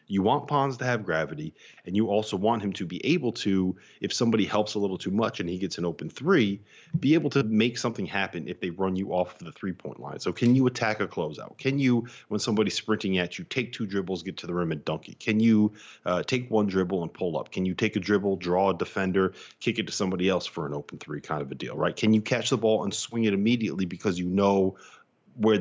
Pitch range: 90-115 Hz